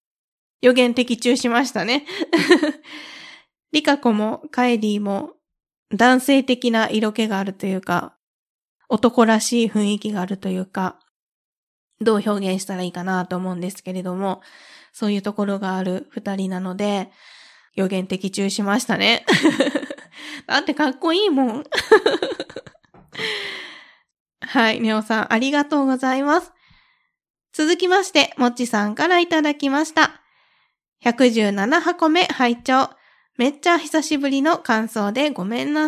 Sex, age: female, 20-39